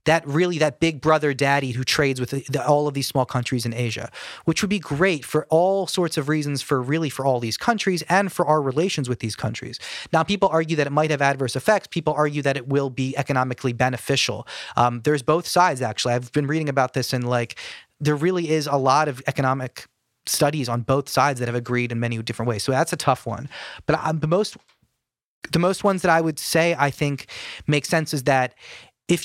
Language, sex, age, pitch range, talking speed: English, male, 30-49, 130-160 Hz, 225 wpm